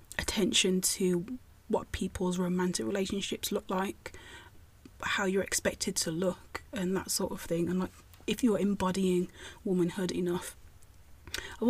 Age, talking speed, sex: 30-49, 135 wpm, female